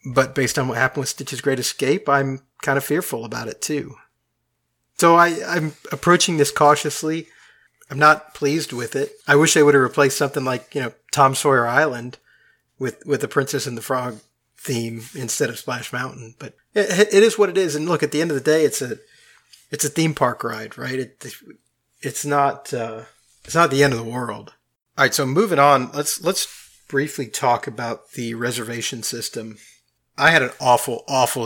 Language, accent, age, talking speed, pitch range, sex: English, American, 30-49, 200 wpm, 125-155 Hz, male